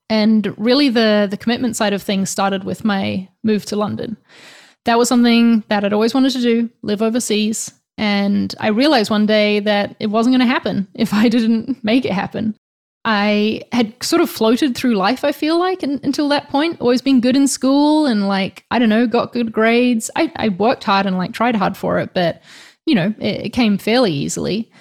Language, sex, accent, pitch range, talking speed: English, female, Australian, 205-245 Hz, 210 wpm